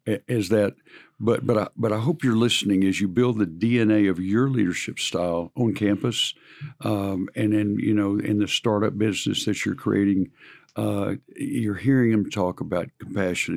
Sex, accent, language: male, American, English